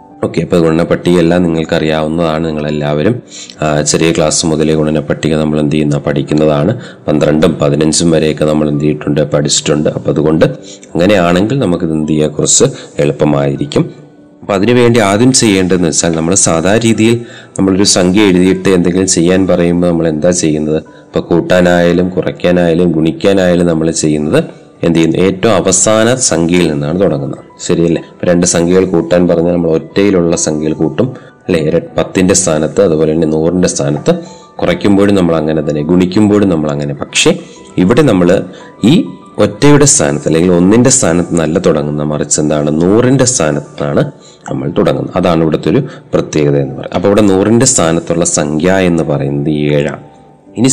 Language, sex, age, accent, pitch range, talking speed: Malayalam, male, 30-49, native, 75-95 Hz, 135 wpm